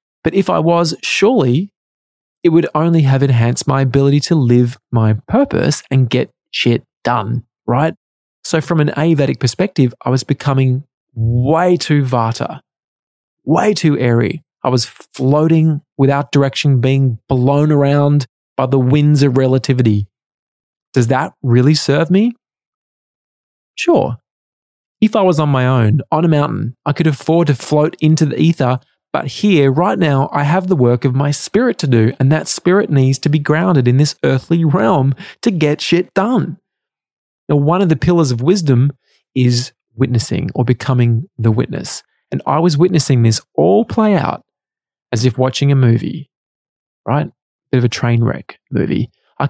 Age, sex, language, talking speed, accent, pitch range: 20-39, male, English, 160 wpm, Australian, 130-160 Hz